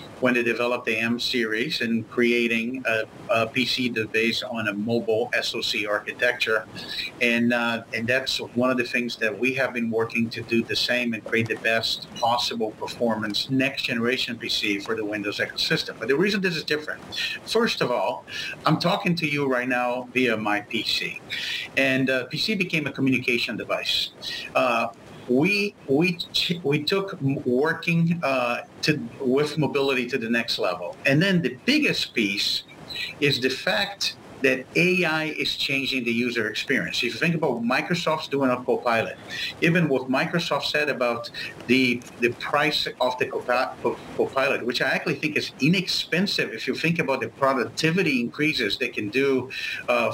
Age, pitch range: 50-69, 120-150 Hz